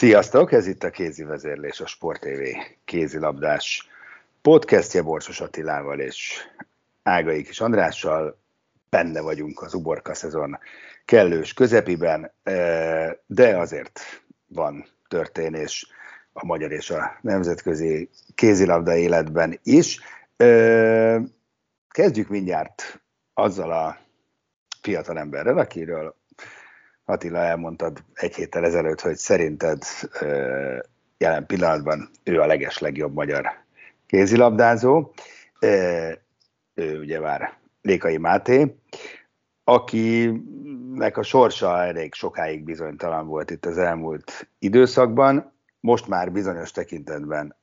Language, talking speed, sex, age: Hungarian, 95 wpm, male, 60-79